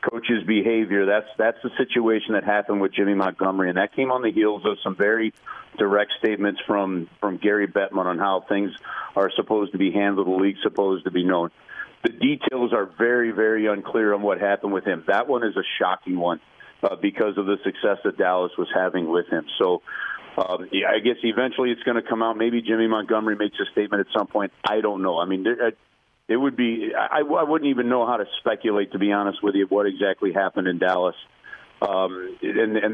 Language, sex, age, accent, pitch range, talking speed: English, male, 40-59, American, 100-115 Hz, 215 wpm